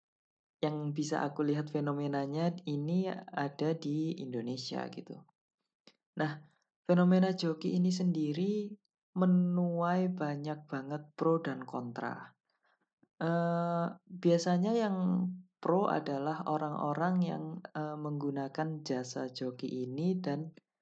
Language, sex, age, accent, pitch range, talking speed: Indonesian, female, 20-39, native, 145-180 Hz, 100 wpm